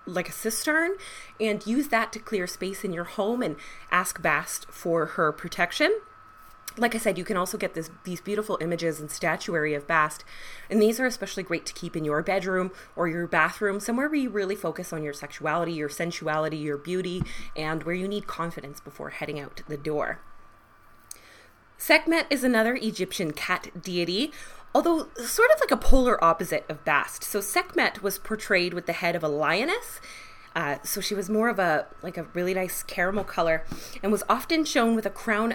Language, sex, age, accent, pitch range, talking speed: English, female, 20-39, American, 160-220 Hz, 190 wpm